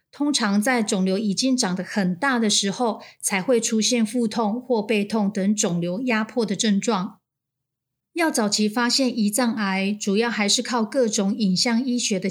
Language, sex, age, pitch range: Chinese, female, 30-49, 200-250 Hz